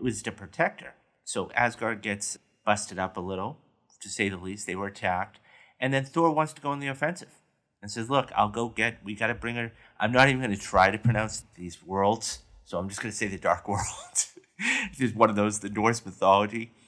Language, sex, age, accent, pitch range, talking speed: English, male, 30-49, American, 95-125 Hz, 230 wpm